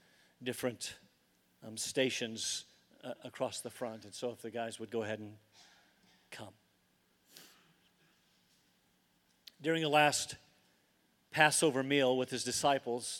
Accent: American